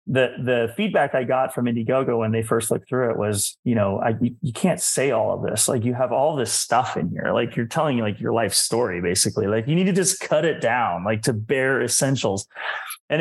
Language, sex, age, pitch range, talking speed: English, male, 30-49, 110-140 Hz, 235 wpm